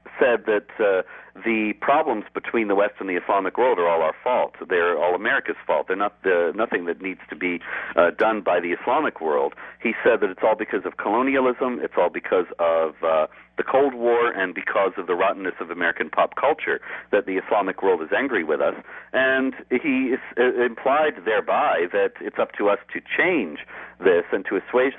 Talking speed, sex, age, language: 200 wpm, male, 50-69, English